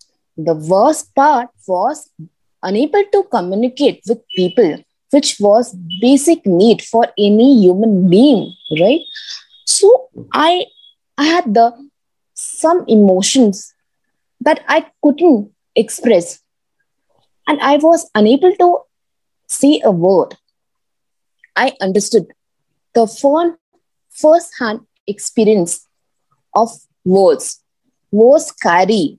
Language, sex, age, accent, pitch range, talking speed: English, female, 20-39, Indian, 190-290 Hz, 95 wpm